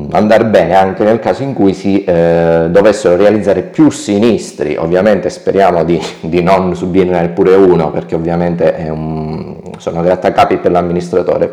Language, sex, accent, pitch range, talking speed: Italian, male, native, 80-95 Hz, 155 wpm